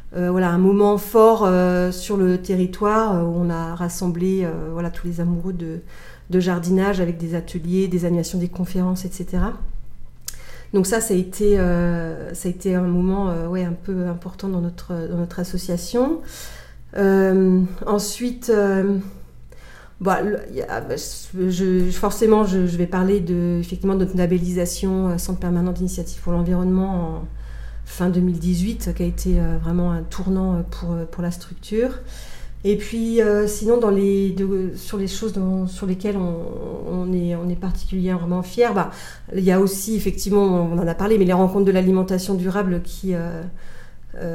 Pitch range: 175-200 Hz